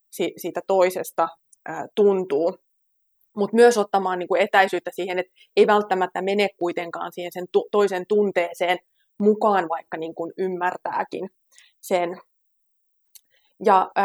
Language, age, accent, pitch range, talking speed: Finnish, 20-39, native, 180-215 Hz, 95 wpm